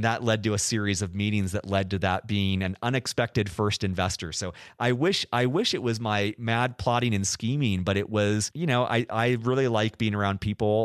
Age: 30-49